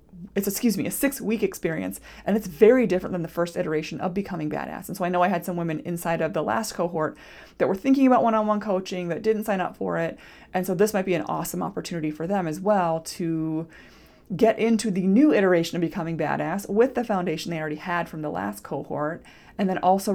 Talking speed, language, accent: 230 wpm, English, American